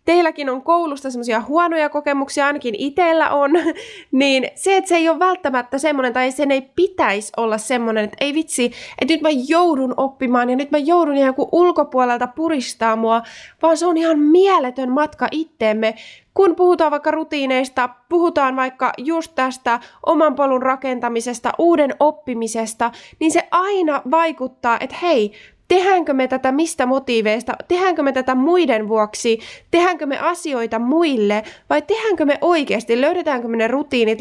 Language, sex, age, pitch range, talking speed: Finnish, female, 20-39, 245-325 Hz, 155 wpm